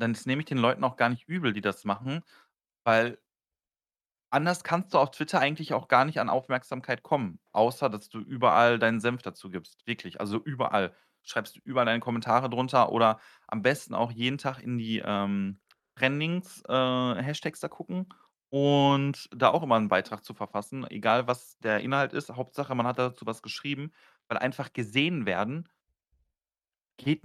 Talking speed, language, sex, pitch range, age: 175 wpm, German, male, 100-130 Hz, 30-49